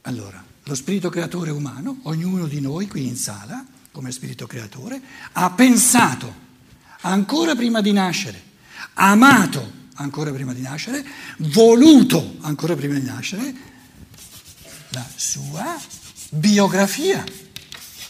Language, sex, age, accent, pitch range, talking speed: Italian, male, 60-79, native, 145-235 Hz, 110 wpm